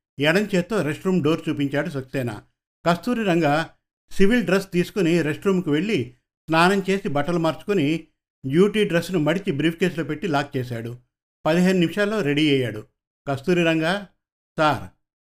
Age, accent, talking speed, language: 50-69, native, 120 wpm, Telugu